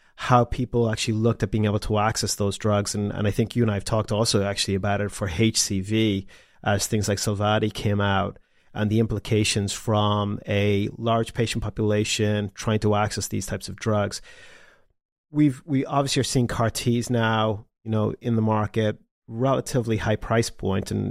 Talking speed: 180 wpm